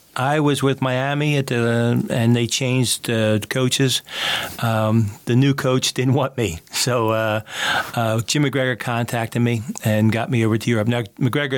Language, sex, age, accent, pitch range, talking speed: English, male, 40-59, American, 110-130 Hz, 170 wpm